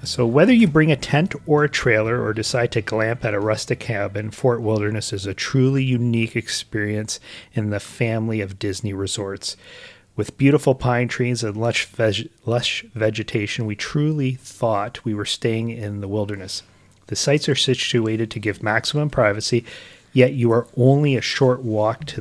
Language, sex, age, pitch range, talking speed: English, male, 30-49, 105-125 Hz, 175 wpm